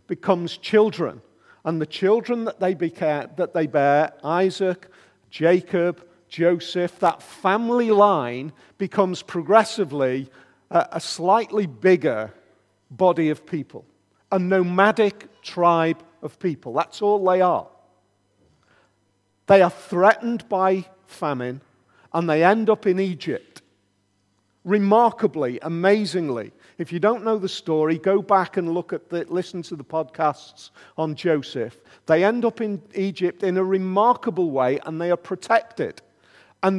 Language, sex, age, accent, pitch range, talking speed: English, male, 50-69, British, 155-200 Hz, 125 wpm